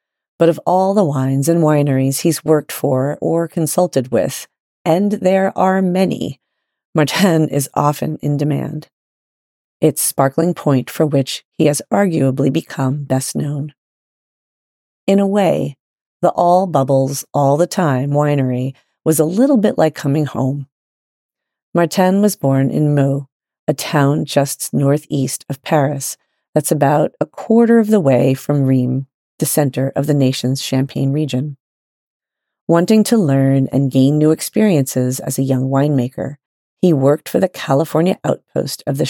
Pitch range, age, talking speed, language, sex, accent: 135-165 Hz, 40-59, 140 wpm, English, female, American